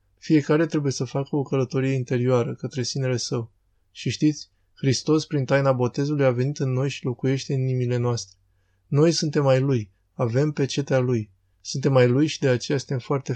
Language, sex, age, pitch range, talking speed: Romanian, male, 20-39, 120-140 Hz, 180 wpm